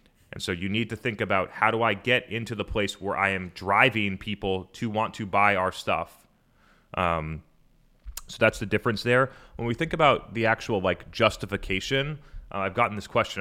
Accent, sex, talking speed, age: American, male, 195 wpm, 30-49